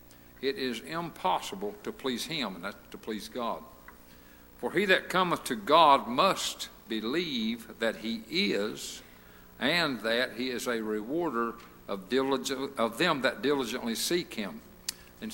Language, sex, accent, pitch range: English, male, American, 100-125 Hz